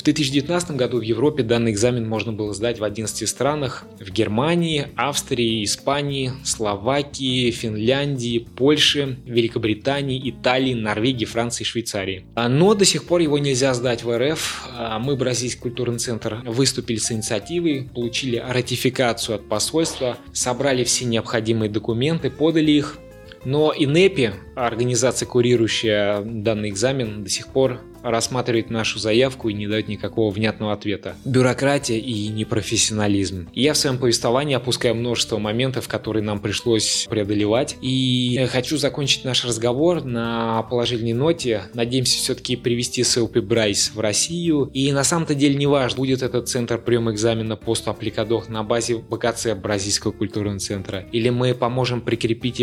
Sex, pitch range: male, 110-130 Hz